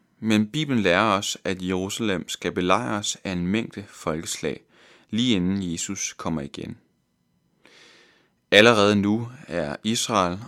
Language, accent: Danish, native